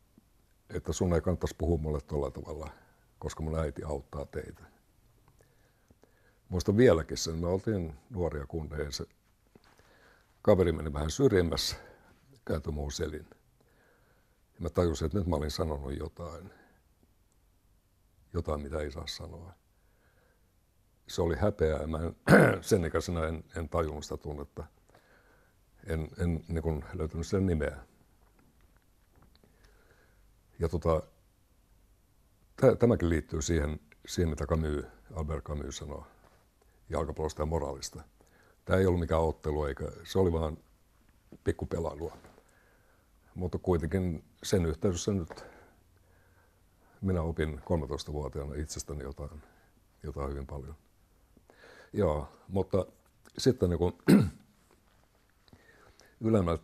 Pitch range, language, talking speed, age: 80-95 Hz, Finnish, 110 wpm, 60-79